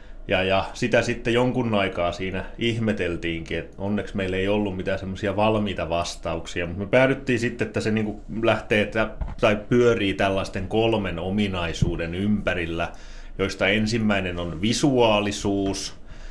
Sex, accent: male, native